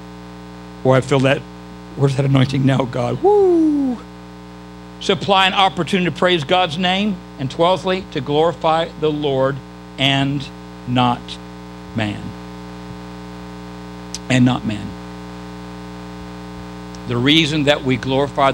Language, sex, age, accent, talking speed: English, male, 60-79, American, 110 wpm